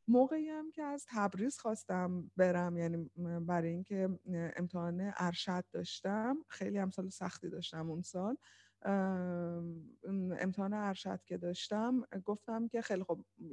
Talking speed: 120 wpm